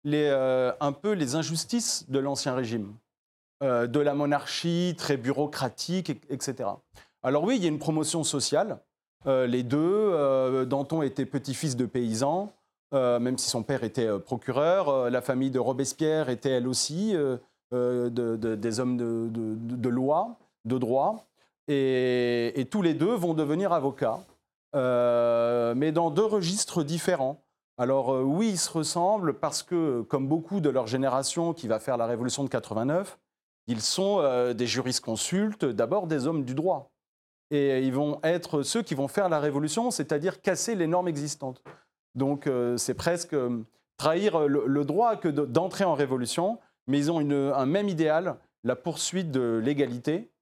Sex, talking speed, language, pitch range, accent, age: male, 170 wpm, French, 125-165 Hz, French, 30-49